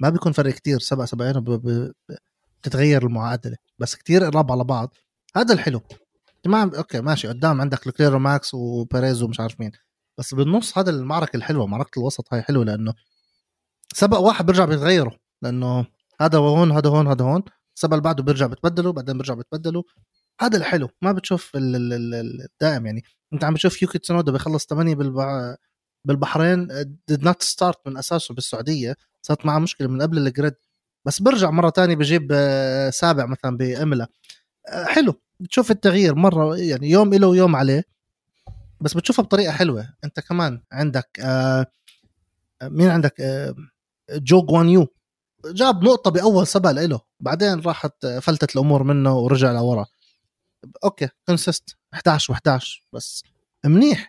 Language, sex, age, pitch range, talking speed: Arabic, male, 20-39, 130-175 Hz, 140 wpm